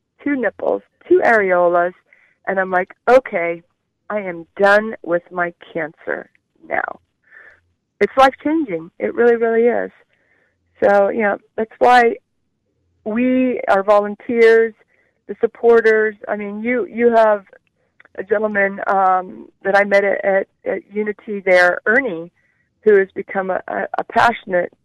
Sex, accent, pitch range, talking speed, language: female, American, 180-225 Hz, 135 wpm, English